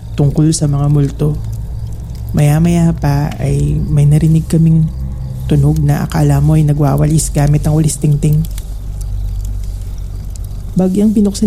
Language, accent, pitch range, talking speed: Filipino, native, 150-180 Hz, 110 wpm